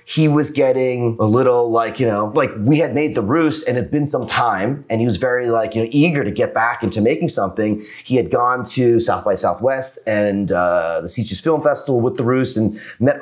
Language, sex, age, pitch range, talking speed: English, male, 30-49, 105-135 Hz, 235 wpm